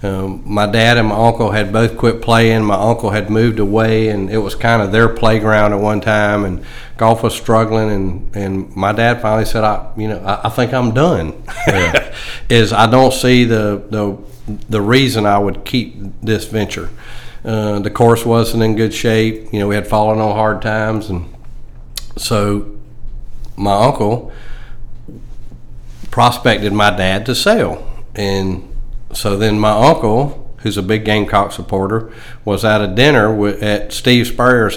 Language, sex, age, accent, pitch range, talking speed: English, male, 50-69, American, 105-120 Hz, 170 wpm